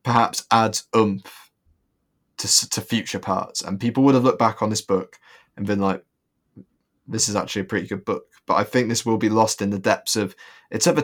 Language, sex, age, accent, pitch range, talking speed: English, male, 20-39, British, 100-110 Hz, 215 wpm